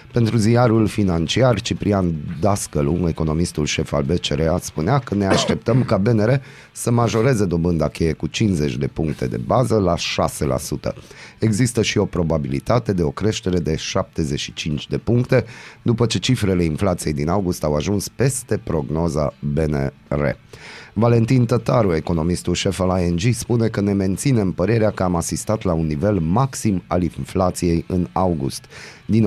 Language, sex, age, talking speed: Romanian, male, 30-49, 150 wpm